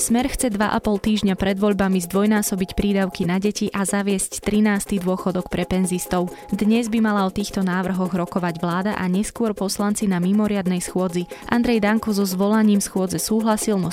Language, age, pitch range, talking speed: Slovak, 20-39, 175-200 Hz, 160 wpm